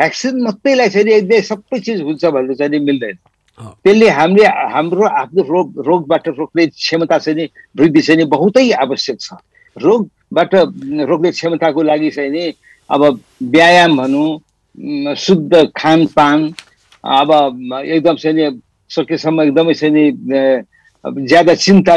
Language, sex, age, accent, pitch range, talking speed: English, male, 60-79, Indian, 140-175 Hz, 125 wpm